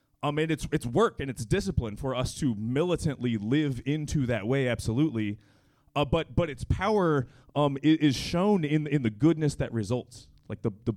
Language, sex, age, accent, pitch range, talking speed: English, male, 30-49, American, 115-145 Hz, 185 wpm